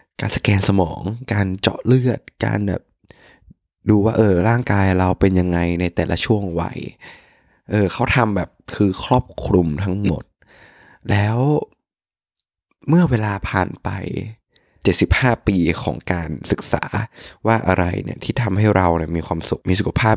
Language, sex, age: Thai, male, 20-39